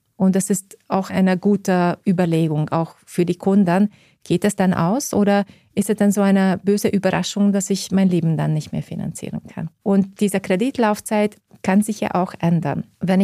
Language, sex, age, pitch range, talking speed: German, female, 30-49, 180-215 Hz, 185 wpm